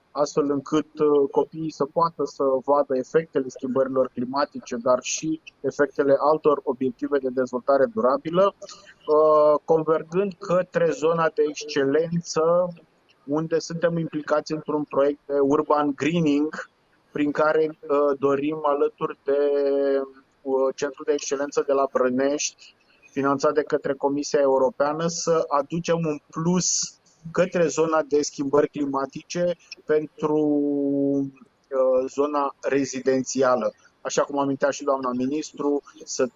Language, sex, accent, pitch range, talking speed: Romanian, male, native, 140-160 Hz, 110 wpm